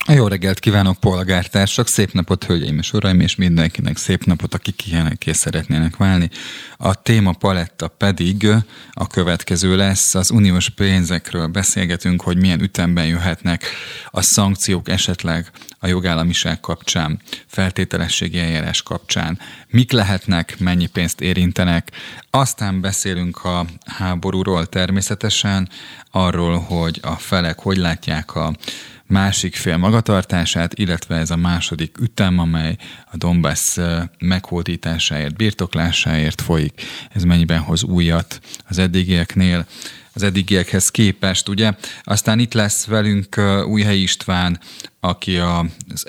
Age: 30-49